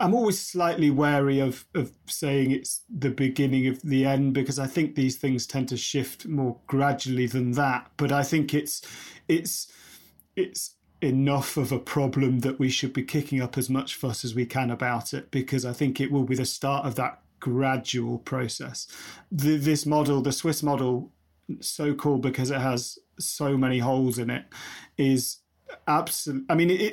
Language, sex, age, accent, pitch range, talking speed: English, male, 30-49, British, 130-150 Hz, 185 wpm